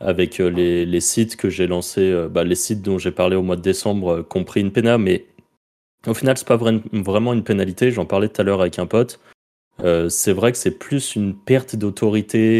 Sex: male